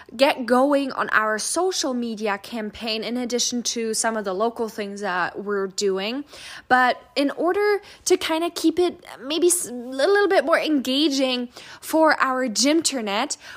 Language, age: English, 10-29